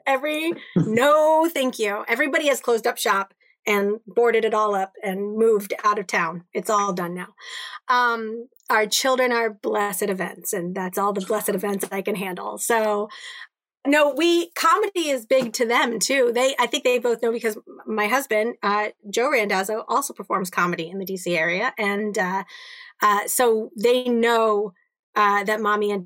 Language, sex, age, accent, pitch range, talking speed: English, female, 30-49, American, 195-235 Hz, 175 wpm